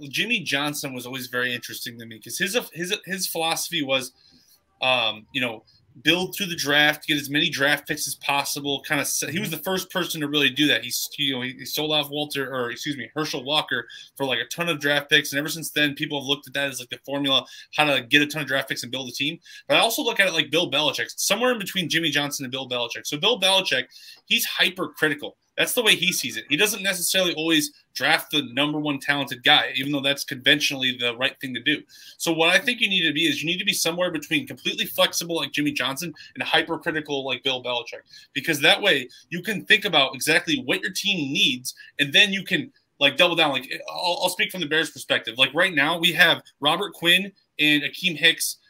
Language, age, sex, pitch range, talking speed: English, 20-39, male, 140-175 Hz, 240 wpm